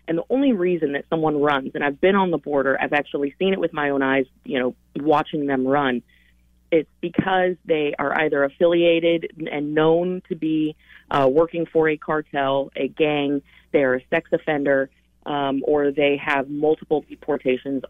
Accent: American